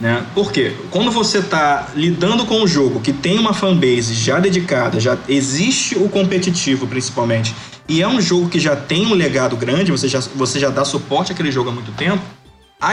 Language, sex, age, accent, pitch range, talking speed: Portuguese, male, 20-39, Brazilian, 130-185 Hz, 195 wpm